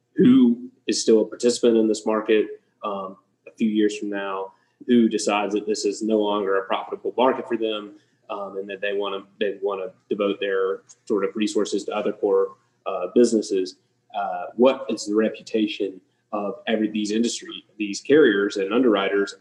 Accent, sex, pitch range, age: American, male, 105-130 Hz, 30-49